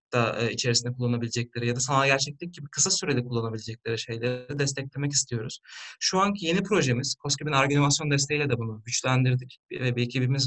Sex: male